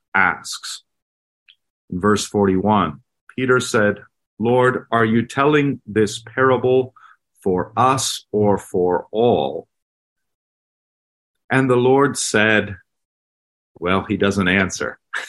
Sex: male